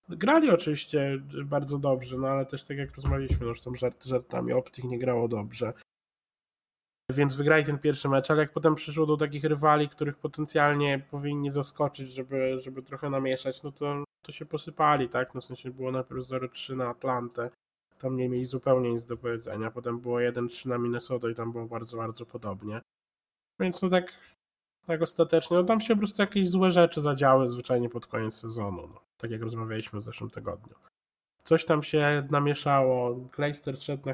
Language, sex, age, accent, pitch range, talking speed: Polish, male, 20-39, native, 125-145 Hz, 180 wpm